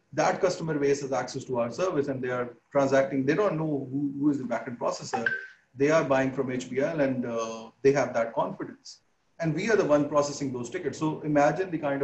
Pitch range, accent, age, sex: 130-150 Hz, Indian, 30-49, male